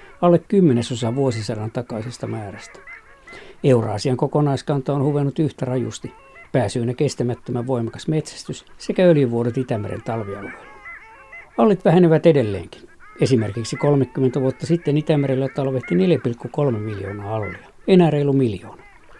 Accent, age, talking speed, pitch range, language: native, 60-79, 105 wpm, 115-140 Hz, Finnish